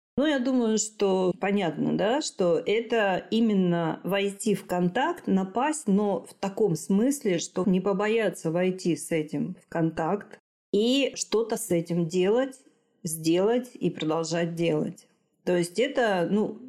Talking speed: 135 wpm